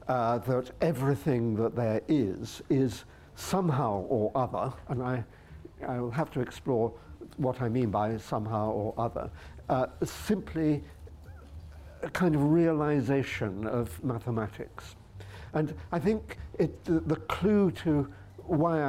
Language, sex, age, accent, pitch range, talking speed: English, male, 60-79, British, 100-140 Hz, 120 wpm